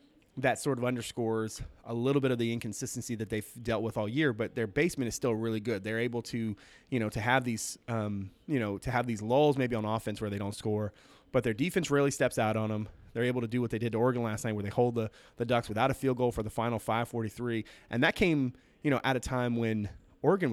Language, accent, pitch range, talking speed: English, American, 110-135 Hz, 265 wpm